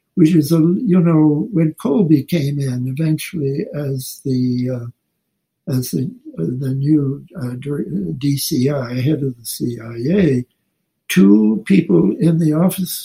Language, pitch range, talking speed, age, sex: English, 140-175 Hz, 130 wpm, 60-79, male